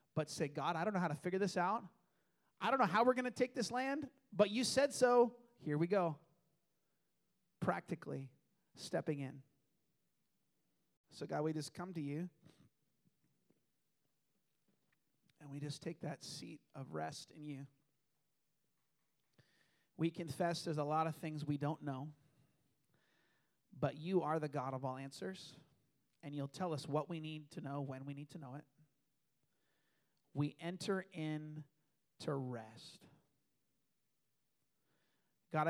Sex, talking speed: male, 145 wpm